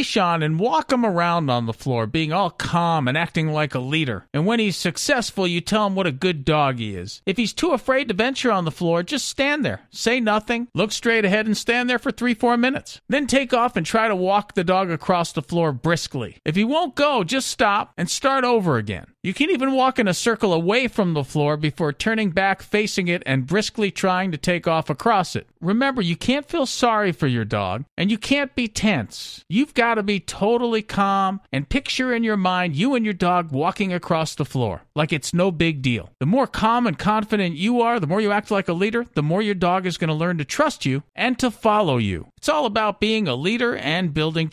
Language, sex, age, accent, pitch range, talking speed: English, male, 50-69, American, 165-235 Hz, 235 wpm